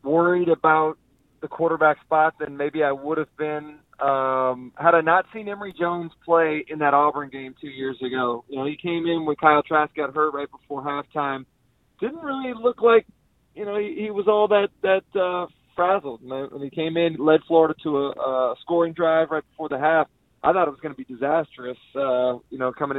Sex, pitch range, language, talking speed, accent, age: male, 145-180 Hz, English, 210 wpm, American, 30-49